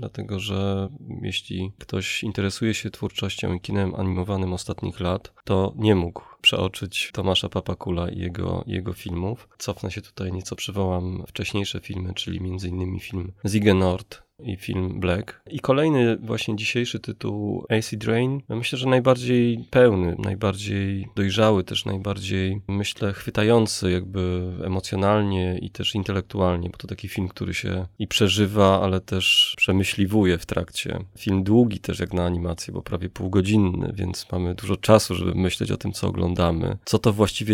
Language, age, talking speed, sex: Polish, 20-39, 150 wpm, male